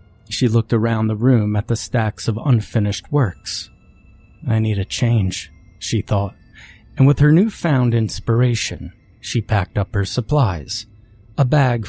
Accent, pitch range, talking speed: American, 105-125 Hz, 145 wpm